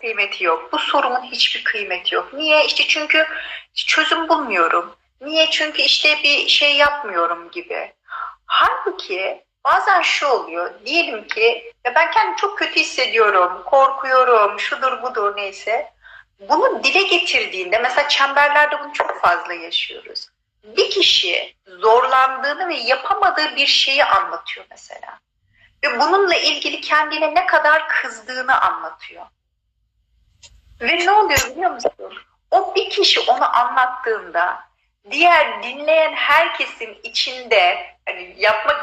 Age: 40-59